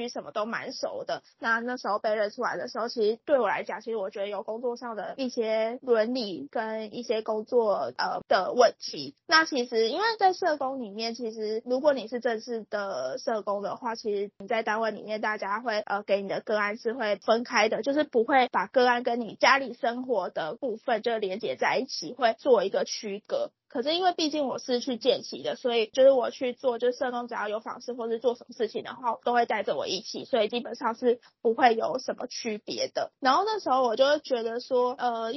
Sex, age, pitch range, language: female, 20-39, 220-265 Hz, Chinese